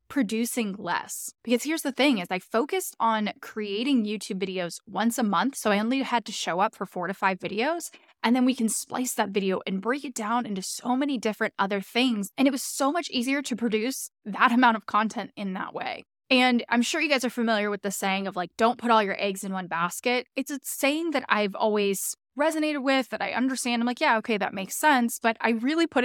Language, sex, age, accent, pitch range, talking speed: English, female, 10-29, American, 205-260 Hz, 235 wpm